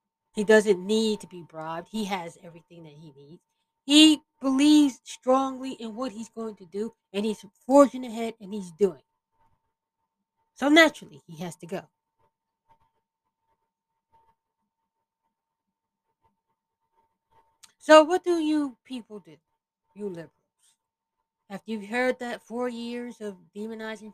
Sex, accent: female, American